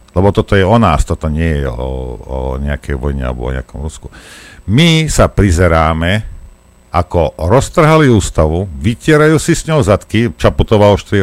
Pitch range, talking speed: 75-120 Hz, 160 wpm